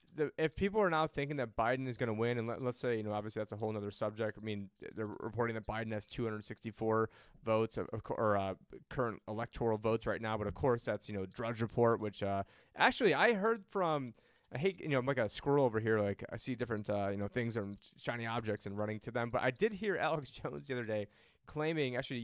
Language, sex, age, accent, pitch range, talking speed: English, male, 30-49, American, 110-145 Hz, 245 wpm